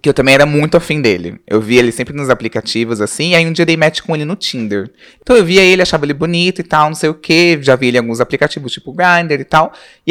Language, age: Portuguese, 20-39